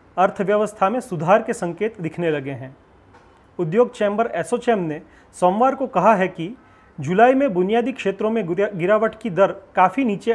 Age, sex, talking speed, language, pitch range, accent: 40-59, male, 155 wpm, Hindi, 165-225 Hz, native